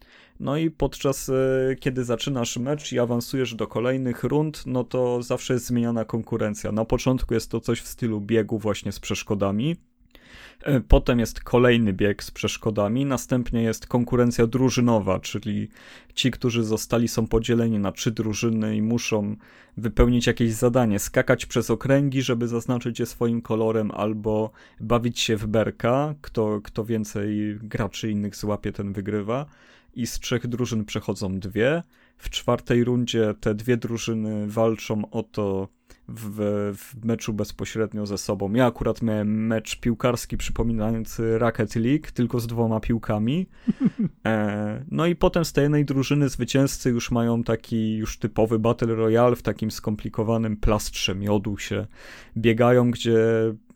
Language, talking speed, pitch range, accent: Polish, 145 wpm, 110-125 Hz, native